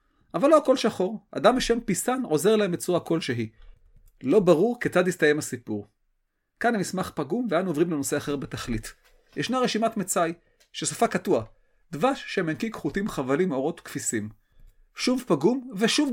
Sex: male